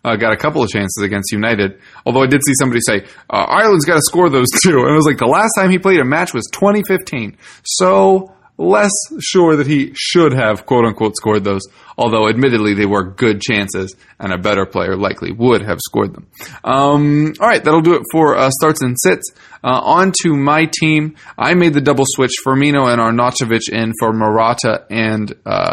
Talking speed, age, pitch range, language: 205 wpm, 20-39, 105-150 Hz, English